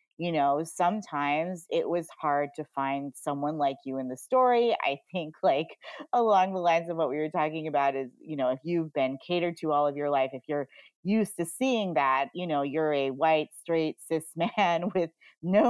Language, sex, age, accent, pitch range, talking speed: English, female, 30-49, American, 145-195 Hz, 205 wpm